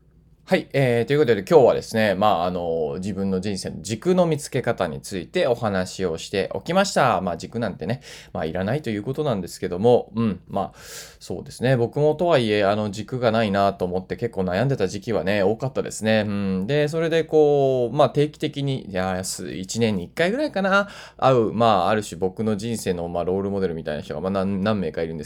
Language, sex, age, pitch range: Japanese, male, 20-39, 100-165 Hz